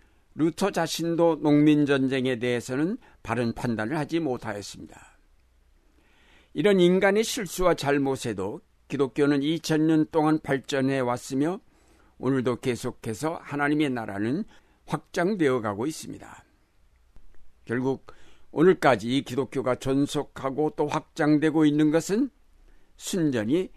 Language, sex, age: Korean, male, 60-79